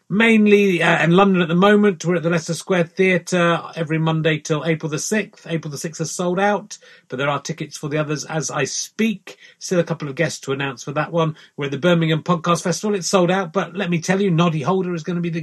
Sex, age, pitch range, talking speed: male, 30-49, 150-185 Hz, 255 wpm